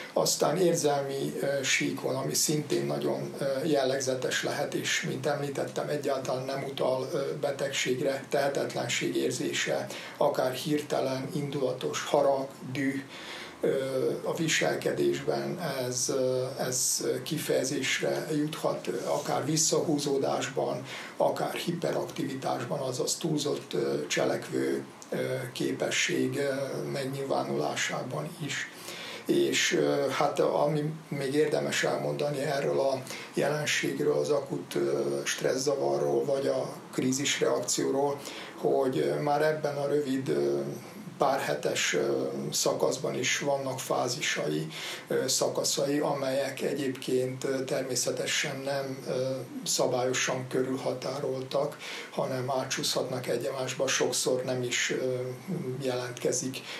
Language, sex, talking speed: Hungarian, male, 85 wpm